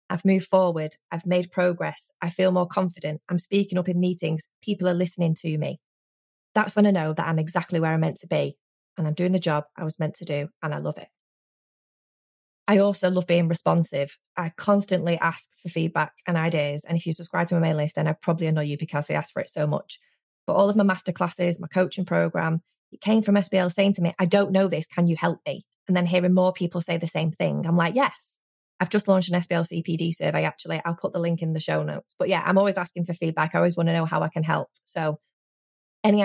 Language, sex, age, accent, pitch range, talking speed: English, female, 20-39, British, 160-190 Hz, 240 wpm